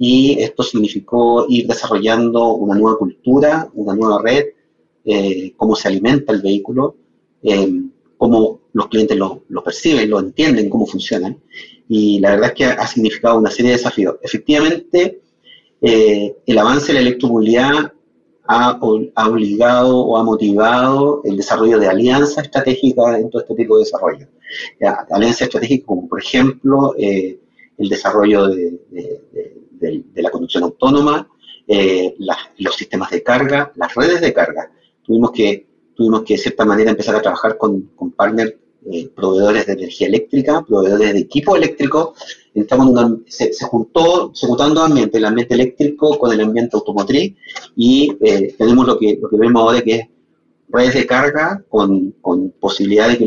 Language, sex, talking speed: Spanish, male, 165 wpm